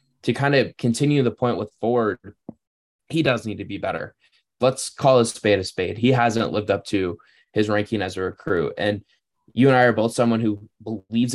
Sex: male